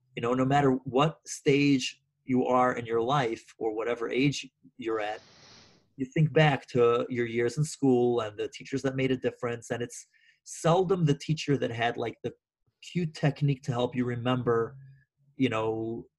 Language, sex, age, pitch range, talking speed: English, male, 30-49, 115-145 Hz, 180 wpm